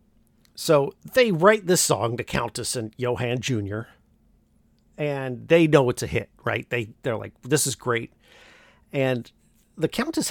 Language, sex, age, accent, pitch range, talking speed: English, male, 50-69, American, 120-155 Hz, 150 wpm